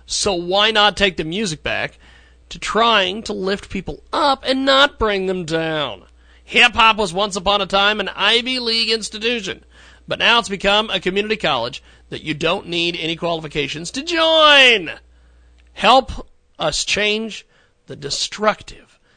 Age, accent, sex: 40-59, American, male